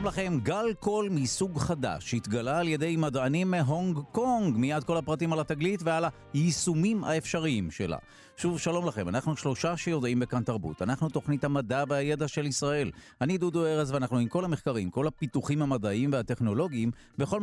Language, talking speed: Hebrew, 160 wpm